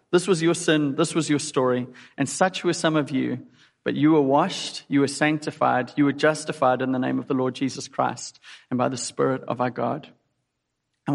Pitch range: 135-150 Hz